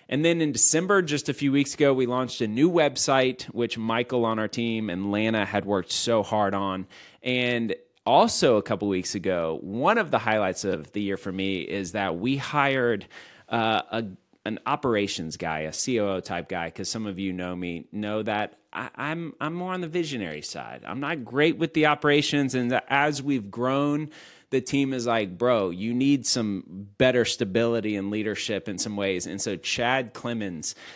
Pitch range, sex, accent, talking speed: 95-130 Hz, male, American, 195 wpm